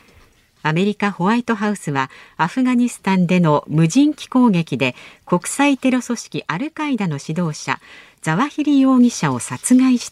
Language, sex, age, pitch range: Japanese, female, 50-69, 155-235 Hz